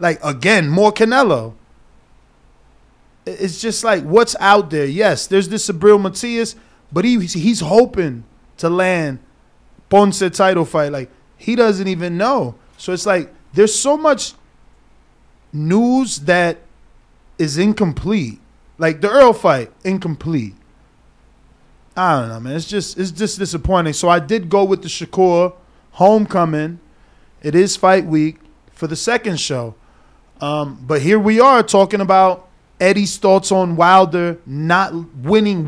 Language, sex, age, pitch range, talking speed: English, male, 20-39, 165-215 Hz, 140 wpm